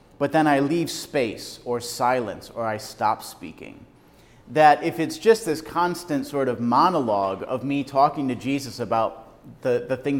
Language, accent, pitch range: English, American, 120-160 Hz